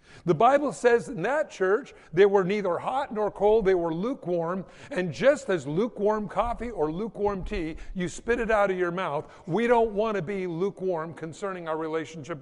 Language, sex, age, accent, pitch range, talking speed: English, male, 60-79, American, 170-225 Hz, 190 wpm